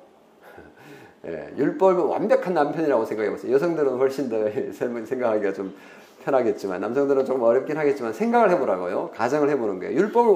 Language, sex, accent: Korean, male, native